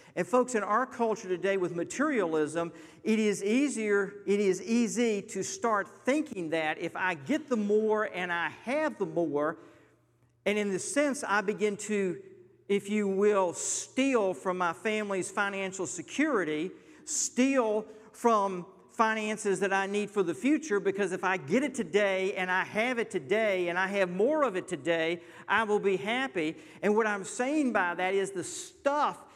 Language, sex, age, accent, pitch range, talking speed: English, male, 50-69, American, 180-225 Hz, 170 wpm